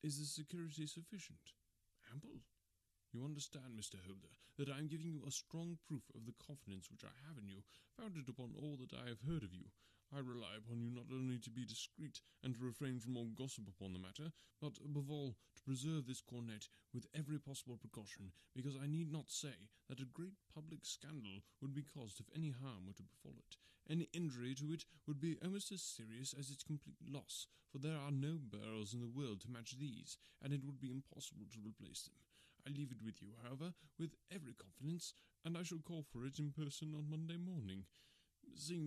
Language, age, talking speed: English, 30-49, 210 wpm